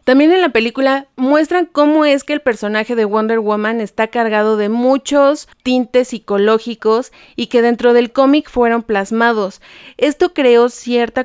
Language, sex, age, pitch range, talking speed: Spanish, female, 30-49, 210-240 Hz, 155 wpm